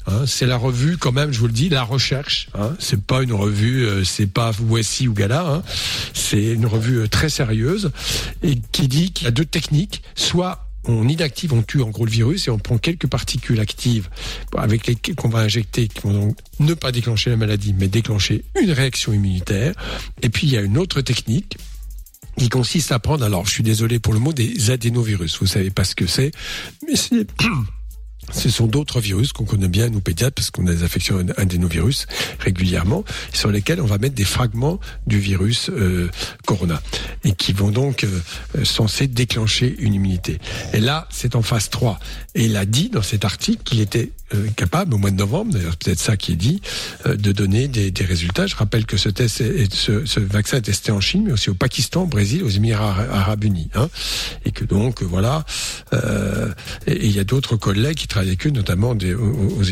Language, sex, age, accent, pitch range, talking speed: French, male, 60-79, French, 100-125 Hz, 210 wpm